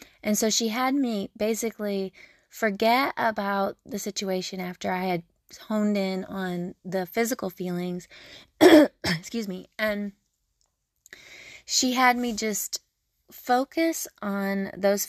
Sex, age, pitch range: female, 20-39, 190-220 Hz